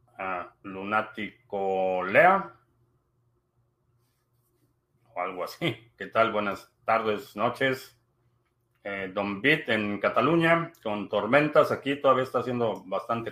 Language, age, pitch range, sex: Spanish, 40-59, 110-135 Hz, male